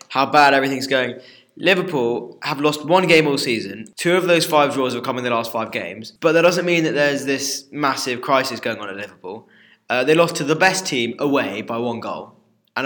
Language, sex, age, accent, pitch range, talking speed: English, male, 10-29, British, 120-150 Hz, 225 wpm